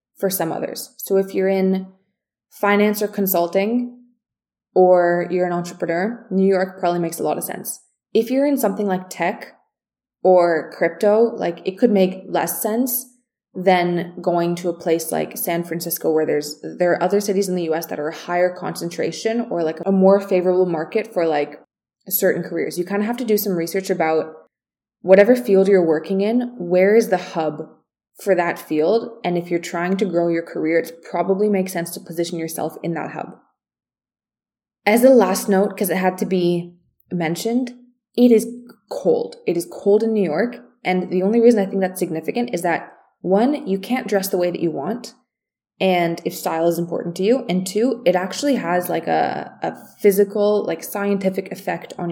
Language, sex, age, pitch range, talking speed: English, female, 20-39, 175-210 Hz, 190 wpm